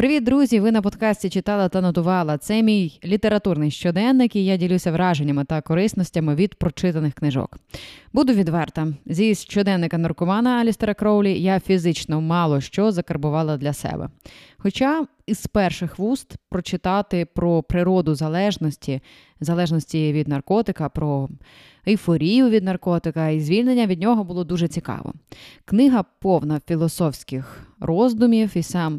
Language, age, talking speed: Ukrainian, 20-39, 130 wpm